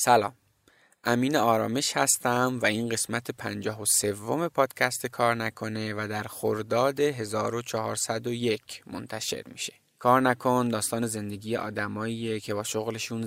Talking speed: 120 wpm